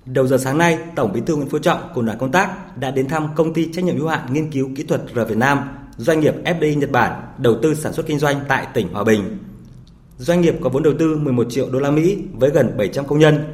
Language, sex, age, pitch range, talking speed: Vietnamese, male, 20-39, 125-165 Hz, 270 wpm